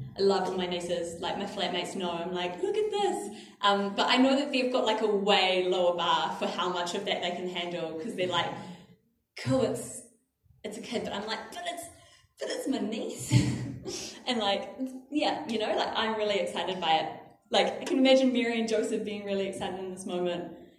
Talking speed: 215 wpm